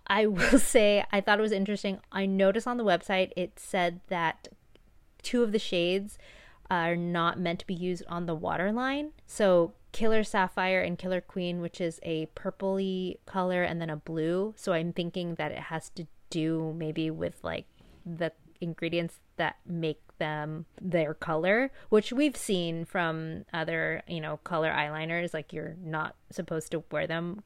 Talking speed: 170 wpm